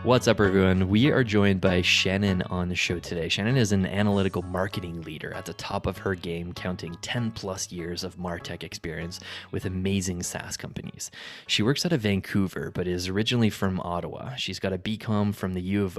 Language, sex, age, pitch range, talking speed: English, male, 20-39, 90-105 Hz, 200 wpm